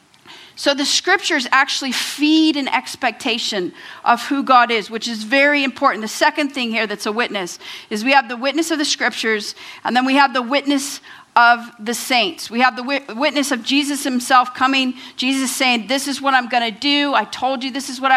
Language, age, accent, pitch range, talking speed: English, 40-59, American, 245-295 Hz, 205 wpm